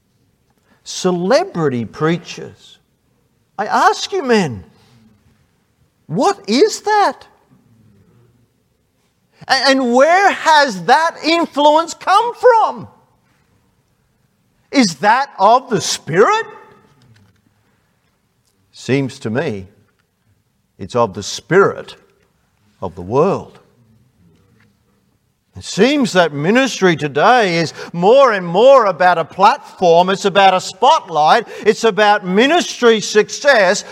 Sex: male